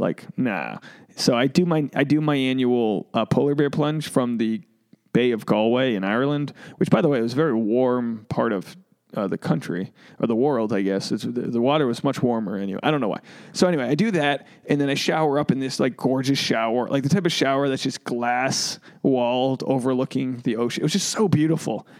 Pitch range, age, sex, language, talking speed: 125-150 Hz, 20-39, male, English, 225 wpm